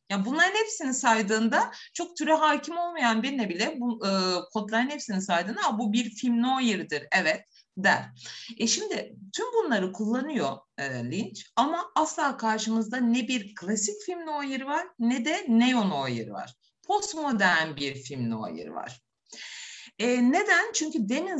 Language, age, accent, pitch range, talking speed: Turkish, 50-69, native, 170-255 Hz, 150 wpm